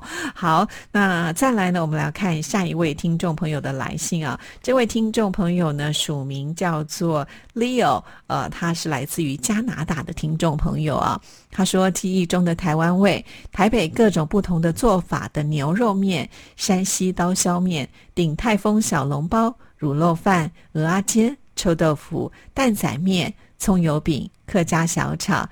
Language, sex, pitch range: Chinese, female, 160-205 Hz